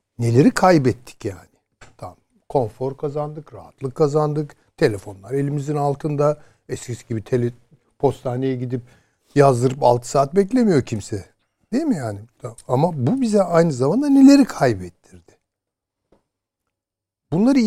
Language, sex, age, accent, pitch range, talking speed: Turkish, male, 60-79, native, 115-155 Hz, 110 wpm